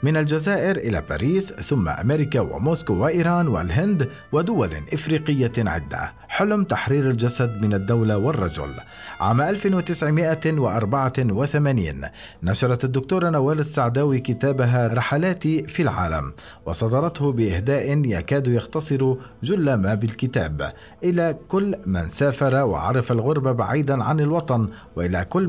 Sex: male